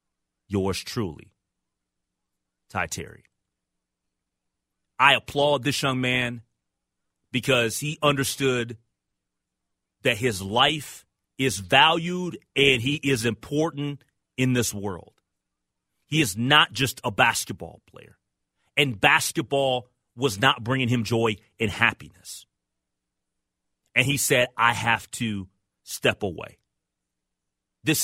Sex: male